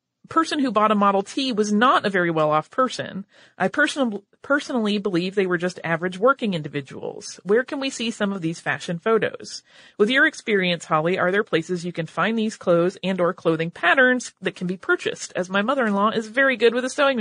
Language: English